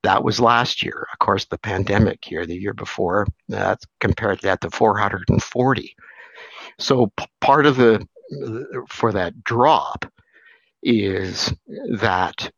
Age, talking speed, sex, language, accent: 60-79, 140 wpm, male, English, American